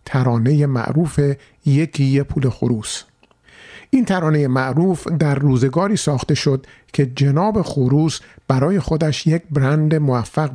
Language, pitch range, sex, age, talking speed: Persian, 130-170 Hz, male, 50-69, 115 wpm